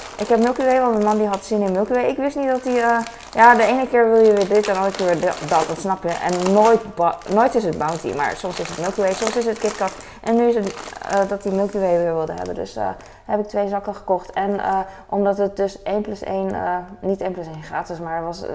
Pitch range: 175-230 Hz